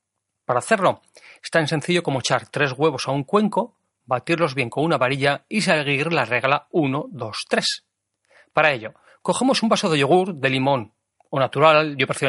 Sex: male